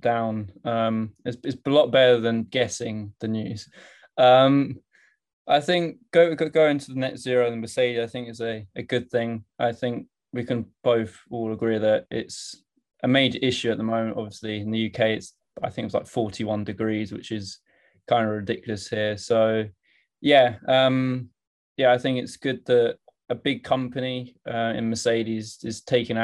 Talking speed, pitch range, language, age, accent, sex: 185 wpm, 110-125 Hz, English, 20-39, British, male